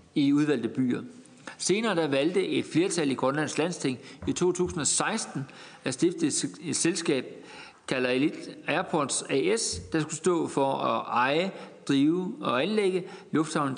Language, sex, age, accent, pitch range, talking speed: Danish, male, 60-79, native, 135-185 Hz, 135 wpm